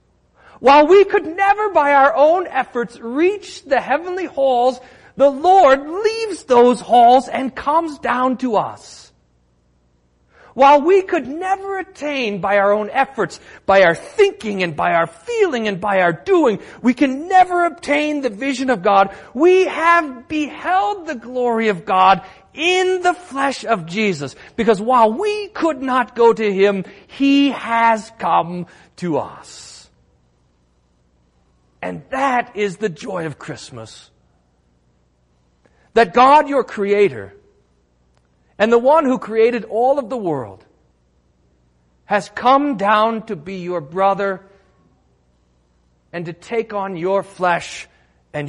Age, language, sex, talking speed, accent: 40-59, English, male, 135 wpm, American